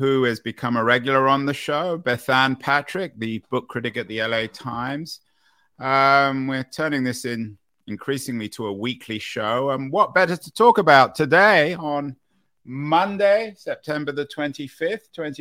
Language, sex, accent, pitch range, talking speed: English, male, British, 115-150 Hz, 155 wpm